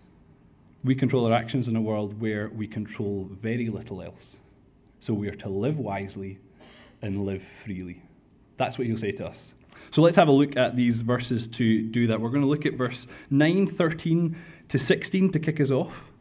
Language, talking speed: English, 195 wpm